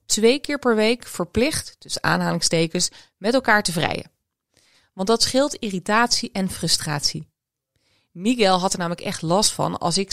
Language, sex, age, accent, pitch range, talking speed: Dutch, female, 20-39, Dutch, 180-240 Hz, 155 wpm